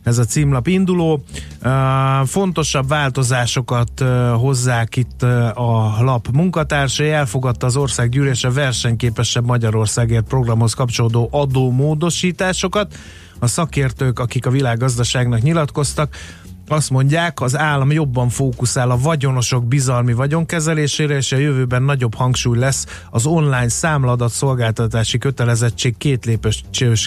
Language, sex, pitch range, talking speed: Hungarian, male, 120-150 Hz, 105 wpm